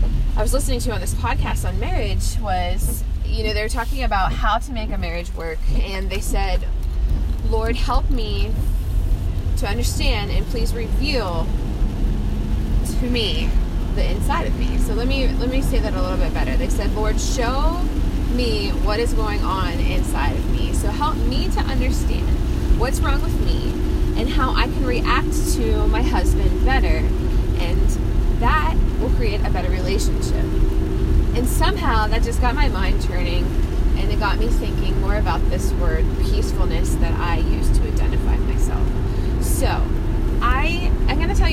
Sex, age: female, 20-39